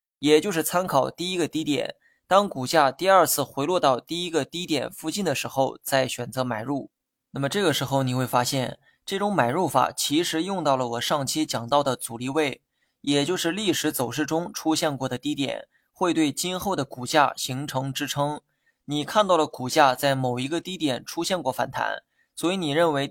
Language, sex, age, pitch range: Chinese, male, 20-39, 130-160 Hz